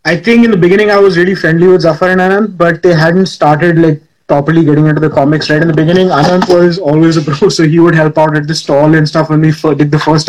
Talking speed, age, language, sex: 275 wpm, 20-39, English, male